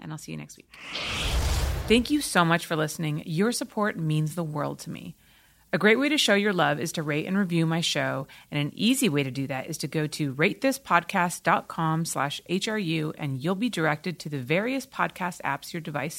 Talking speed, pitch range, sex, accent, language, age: 215 wpm, 155-210 Hz, female, American, English, 30-49